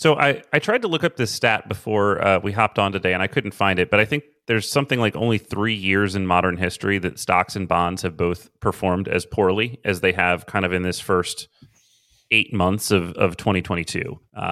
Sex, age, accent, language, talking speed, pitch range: male, 30-49, American, English, 225 wpm, 95-110 Hz